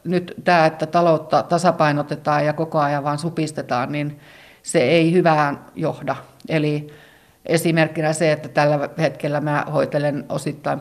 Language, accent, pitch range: Finnish, native, 145-155 Hz